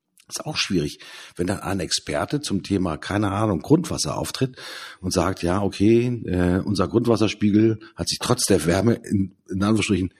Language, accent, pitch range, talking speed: German, German, 90-120 Hz, 160 wpm